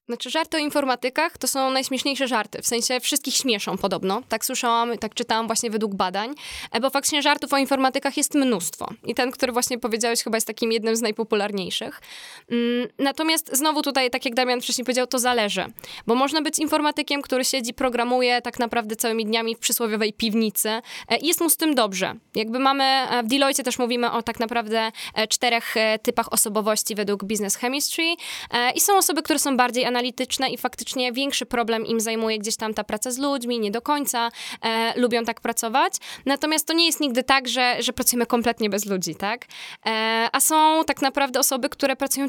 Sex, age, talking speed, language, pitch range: female, 10-29, 180 wpm, Polish, 220-270 Hz